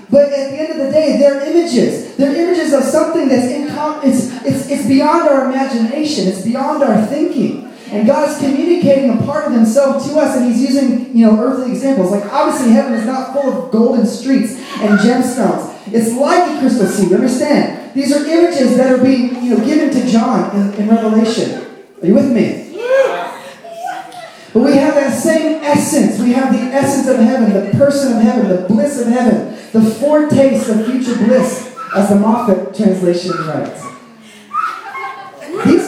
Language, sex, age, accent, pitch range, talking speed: English, male, 30-49, American, 225-285 Hz, 180 wpm